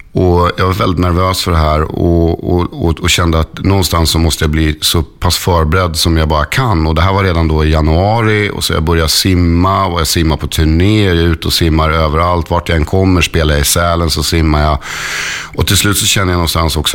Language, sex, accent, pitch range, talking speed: English, male, Swedish, 80-95 Hz, 235 wpm